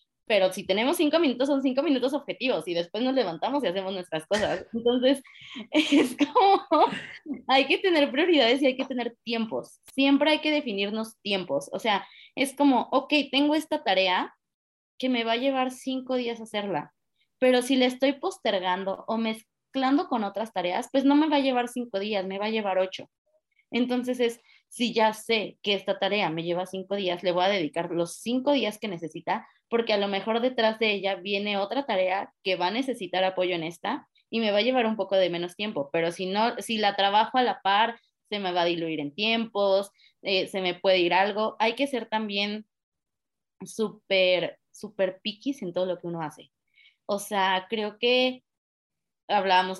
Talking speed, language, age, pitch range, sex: 195 wpm, Spanish, 20-39, 185-255 Hz, female